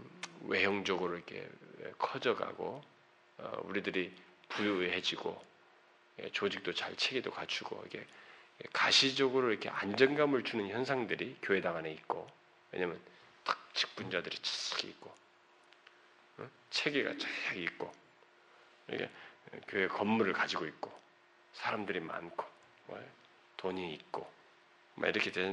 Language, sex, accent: Korean, male, native